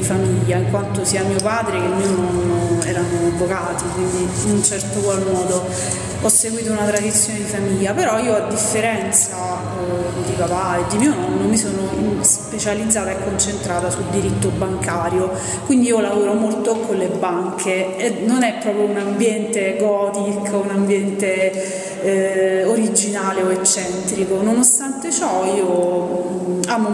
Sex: female